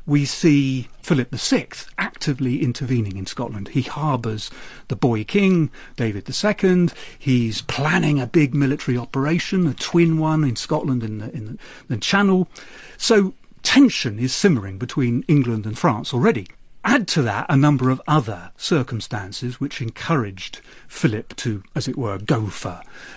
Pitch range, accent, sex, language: 120-165 Hz, British, male, English